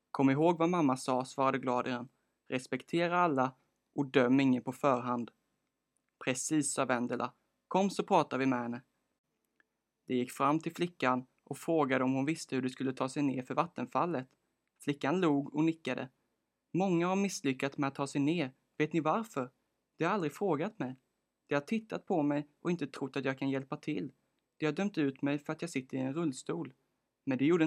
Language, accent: Swedish, native